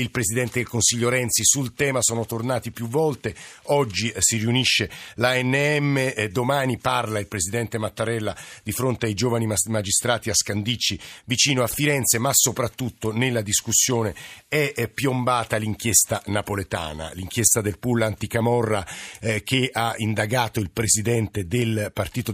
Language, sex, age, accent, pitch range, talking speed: Italian, male, 50-69, native, 105-125 Hz, 130 wpm